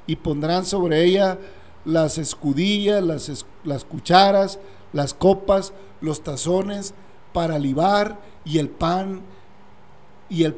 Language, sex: Spanish, male